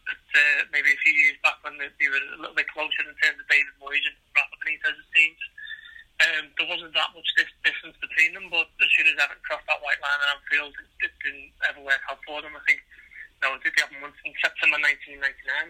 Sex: male